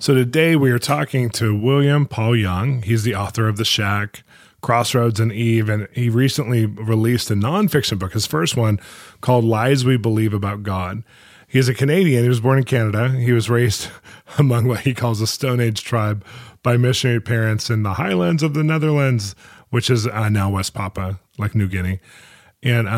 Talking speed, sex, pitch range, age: 190 wpm, male, 105-125 Hz, 30-49